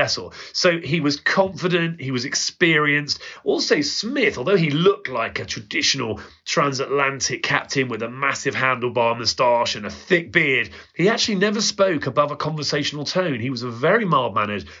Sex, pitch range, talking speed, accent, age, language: male, 135-185 Hz, 160 wpm, British, 30-49, English